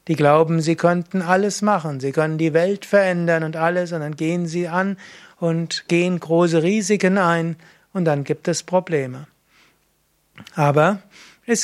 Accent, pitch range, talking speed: German, 150-180 Hz, 155 wpm